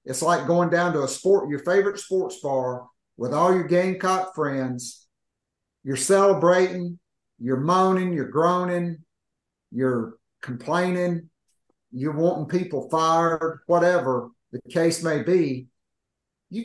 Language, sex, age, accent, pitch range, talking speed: English, male, 50-69, American, 130-175 Hz, 125 wpm